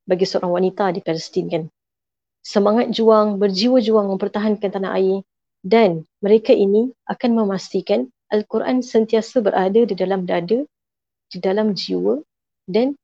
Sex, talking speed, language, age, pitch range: female, 130 wpm, Malay, 30-49, 185-225 Hz